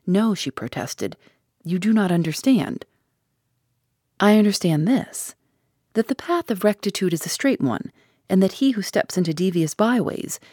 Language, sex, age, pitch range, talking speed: English, female, 40-59, 145-210 Hz, 155 wpm